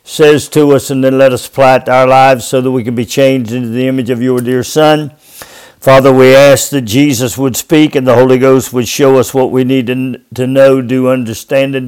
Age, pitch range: 50-69, 120-140 Hz